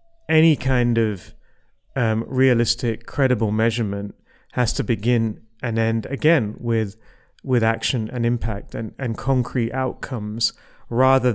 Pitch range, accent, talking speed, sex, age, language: 110-130 Hz, British, 120 wpm, male, 30-49, English